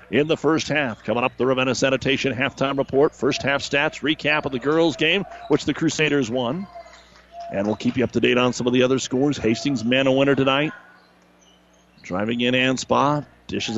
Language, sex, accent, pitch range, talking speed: English, male, American, 125-150 Hz, 195 wpm